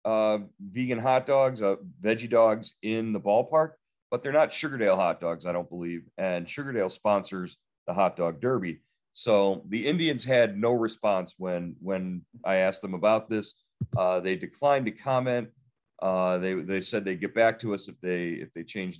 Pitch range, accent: 95-125 Hz, American